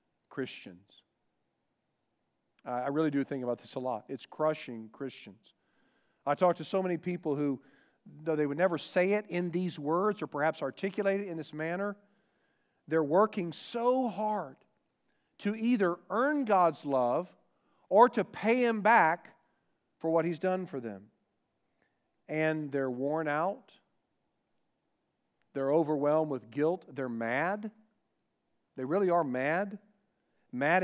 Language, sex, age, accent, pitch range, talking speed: English, male, 40-59, American, 135-190 Hz, 135 wpm